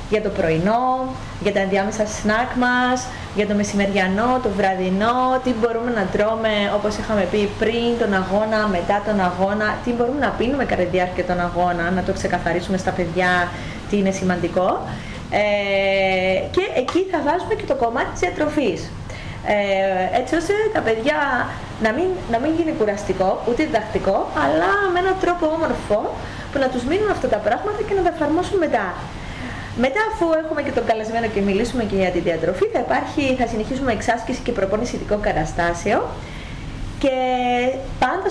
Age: 20-39